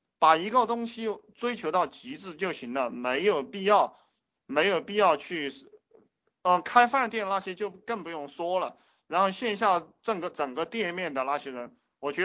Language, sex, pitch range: Chinese, male, 155-230 Hz